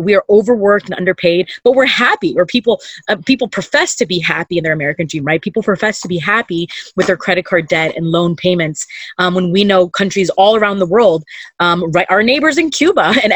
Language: English